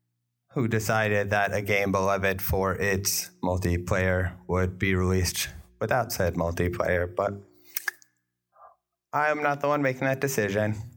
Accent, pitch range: American, 95-115 Hz